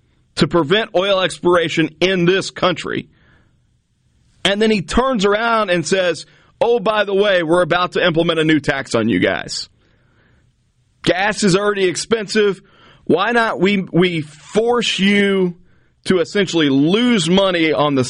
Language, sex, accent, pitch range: English, male, American, 150-200 Hz